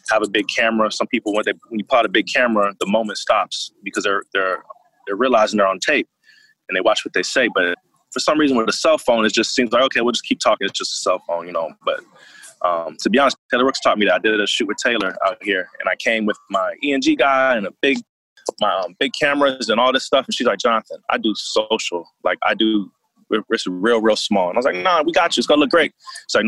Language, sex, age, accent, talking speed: English, male, 20-39, American, 265 wpm